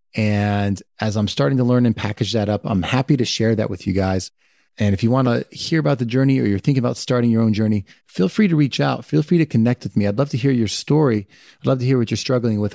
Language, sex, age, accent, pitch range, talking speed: English, male, 30-49, American, 105-130 Hz, 280 wpm